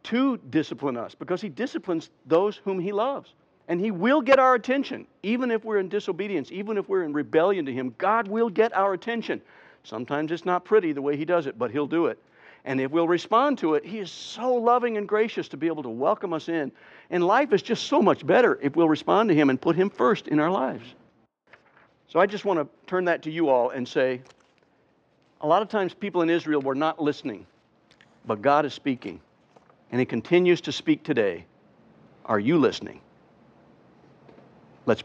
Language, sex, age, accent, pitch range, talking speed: English, male, 60-79, American, 145-205 Hz, 205 wpm